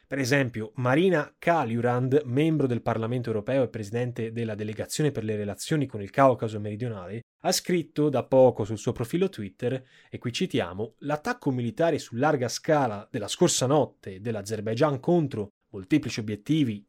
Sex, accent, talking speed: male, native, 150 wpm